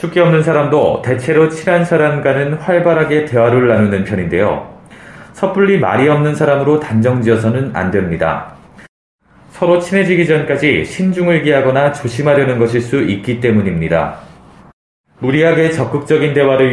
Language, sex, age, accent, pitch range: Korean, male, 30-49, native, 115-155 Hz